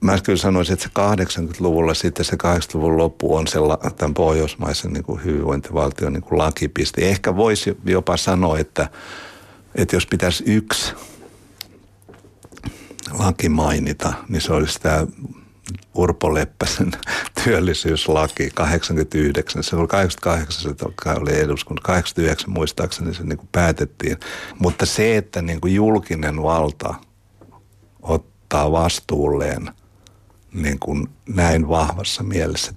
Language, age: Finnish, 60-79